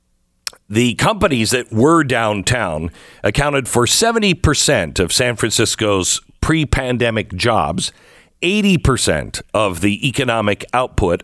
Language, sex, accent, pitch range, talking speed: English, male, American, 105-150 Hz, 95 wpm